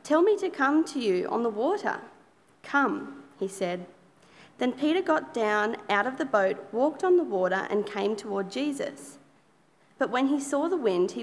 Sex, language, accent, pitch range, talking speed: female, English, Australian, 210-280 Hz, 185 wpm